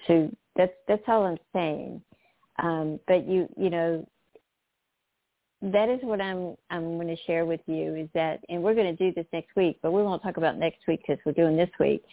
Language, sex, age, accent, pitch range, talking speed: English, female, 50-69, American, 165-185 Hz, 215 wpm